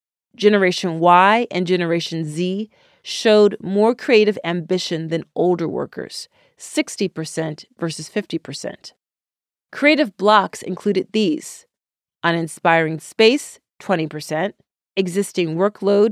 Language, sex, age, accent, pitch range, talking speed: English, female, 30-49, American, 165-215 Hz, 90 wpm